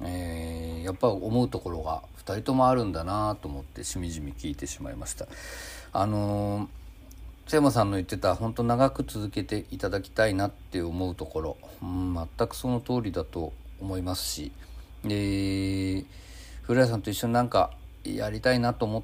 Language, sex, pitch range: Japanese, male, 85-110 Hz